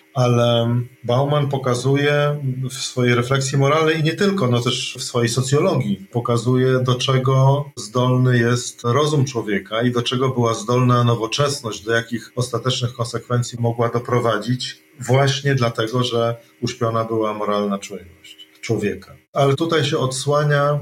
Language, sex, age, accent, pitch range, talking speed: Polish, male, 40-59, native, 115-135 Hz, 135 wpm